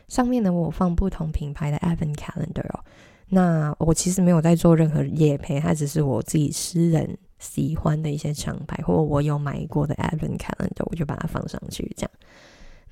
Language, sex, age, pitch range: Chinese, female, 20-39, 160-195 Hz